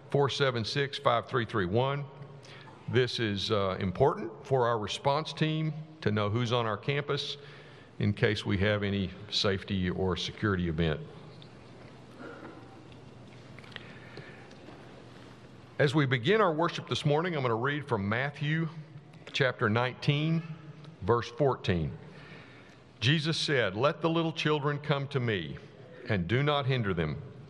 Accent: American